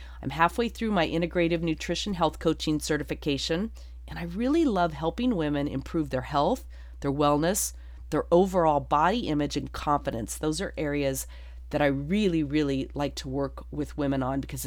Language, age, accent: English, 40-59, American